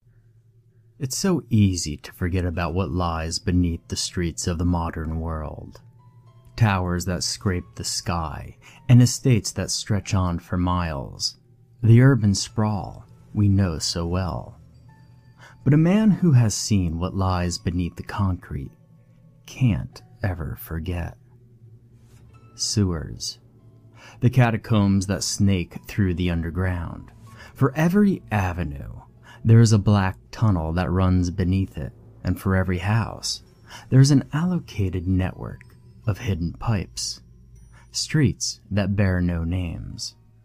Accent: American